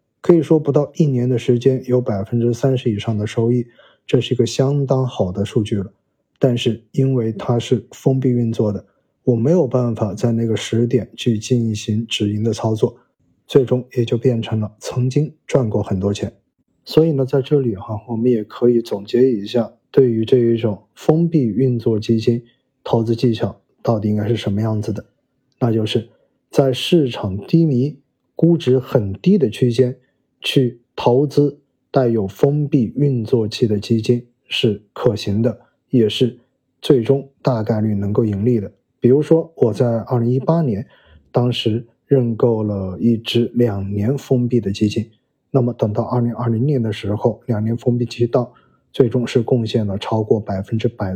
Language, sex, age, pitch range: Chinese, male, 20-39, 110-130 Hz